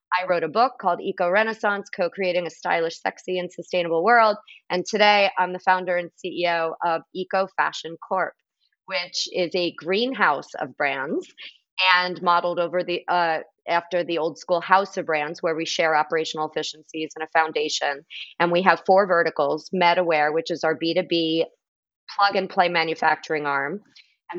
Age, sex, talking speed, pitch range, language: 40-59, female, 160 wpm, 160-185 Hz, English